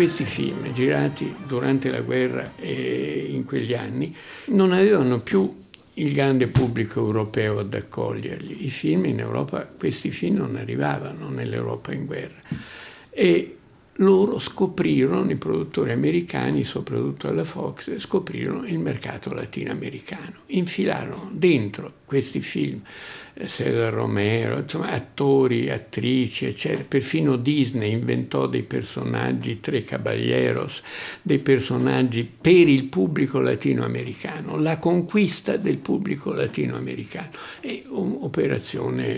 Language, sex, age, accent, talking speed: Italian, male, 60-79, native, 110 wpm